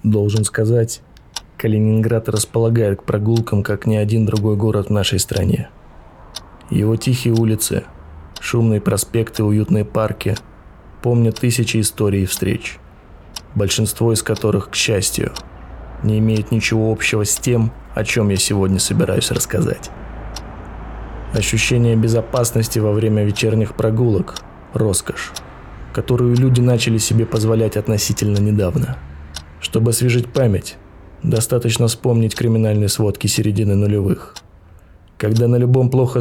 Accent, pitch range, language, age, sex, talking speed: native, 105-120 Hz, Russian, 20-39, male, 120 wpm